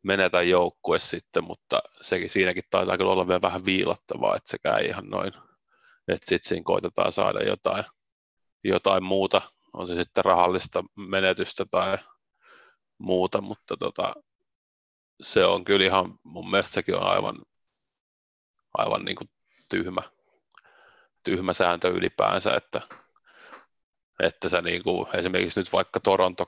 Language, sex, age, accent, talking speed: Finnish, male, 30-49, native, 125 wpm